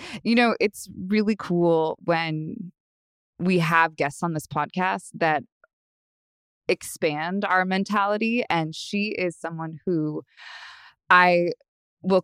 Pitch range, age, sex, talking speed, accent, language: 165-200 Hz, 20-39, female, 115 wpm, American, English